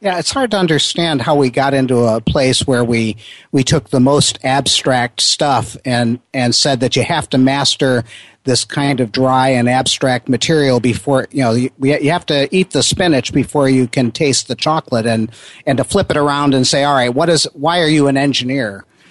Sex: male